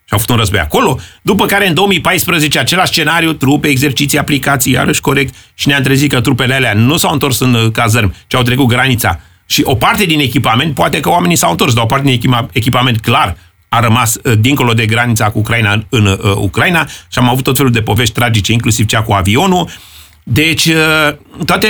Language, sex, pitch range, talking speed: Romanian, male, 115-160 Hz, 195 wpm